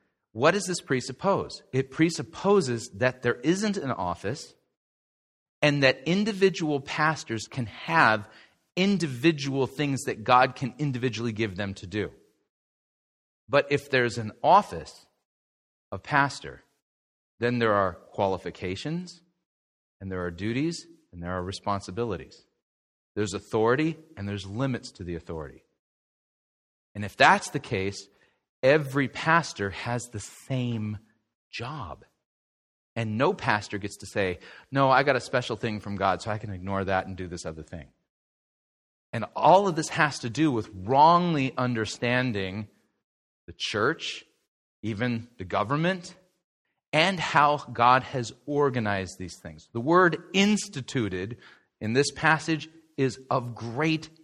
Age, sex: 40-59, male